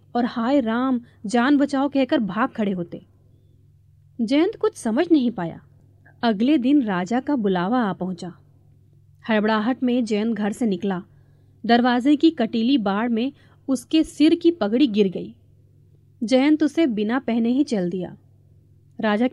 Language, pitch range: Hindi, 170-265 Hz